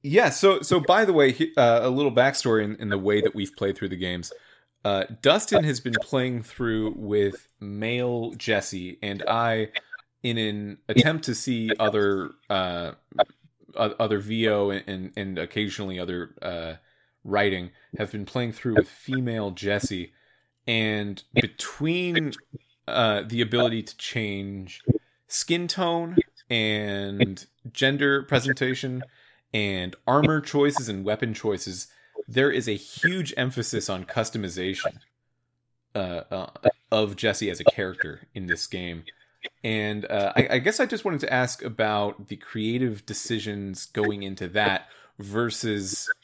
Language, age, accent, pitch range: English, 20-39, American, 100-125 Hz